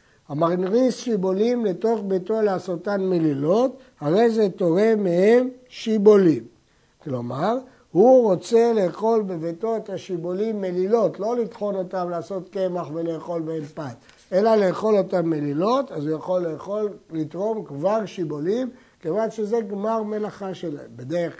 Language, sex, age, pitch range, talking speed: Hebrew, male, 60-79, 160-215 Hz, 125 wpm